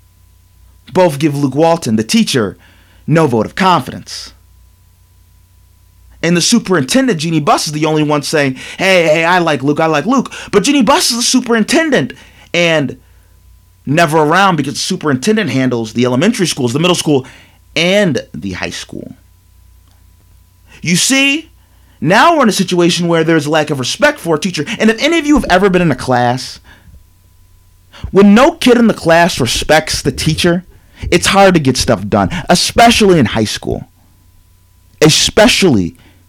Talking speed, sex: 160 wpm, male